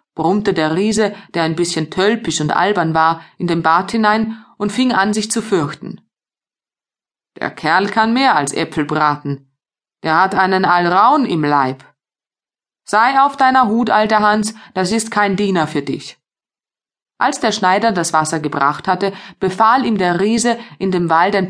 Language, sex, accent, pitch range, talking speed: German, female, German, 155-220 Hz, 165 wpm